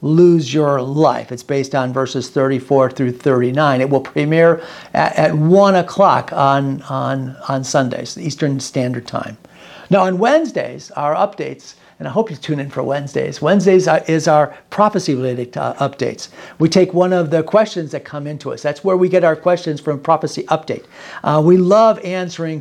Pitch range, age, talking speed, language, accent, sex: 145-185 Hz, 50-69, 170 wpm, English, American, male